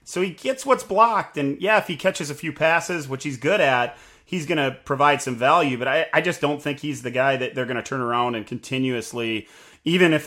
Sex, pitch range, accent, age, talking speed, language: male, 120-145 Hz, American, 30-49, 245 wpm, English